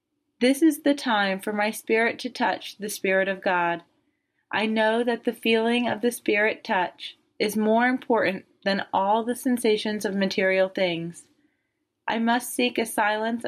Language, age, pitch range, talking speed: English, 30-49, 195-250 Hz, 165 wpm